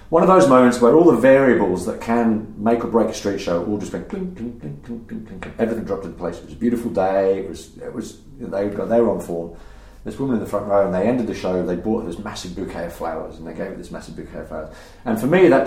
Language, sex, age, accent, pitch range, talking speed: English, male, 40-59, British, 85-130 Hz, 290 wpm